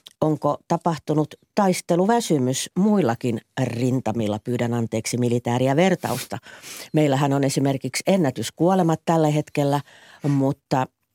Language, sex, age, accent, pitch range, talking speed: Finnish, female, 50-69, native, 125-175 Hz, 85 wpm